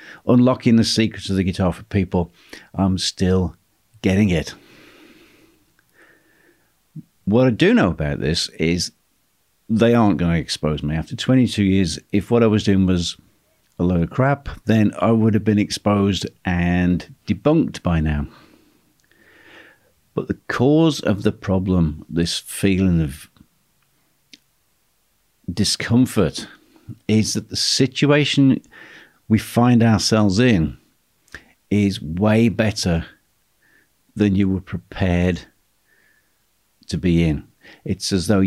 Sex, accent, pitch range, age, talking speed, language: male, British, 85-110 Hz, 50-69, 125 wpm, English